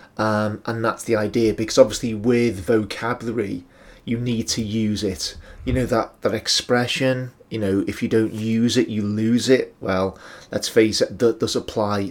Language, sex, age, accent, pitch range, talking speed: English, male, 30-49, British, 105-125 Hz, 180 wpm